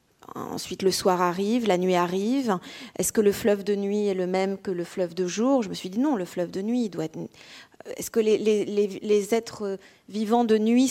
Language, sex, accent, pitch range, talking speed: French, female, French, 180-230 Hz, 235 wpm